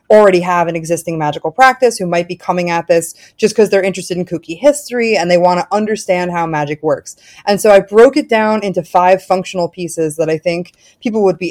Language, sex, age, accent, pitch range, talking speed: English, female, 20-39, American, 170-215 Hz, 225 wpm